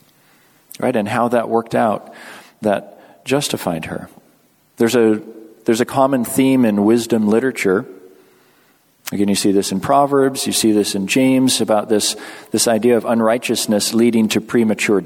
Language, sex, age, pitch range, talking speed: English, male, 40-59, 105-130 Hz, 150 wpm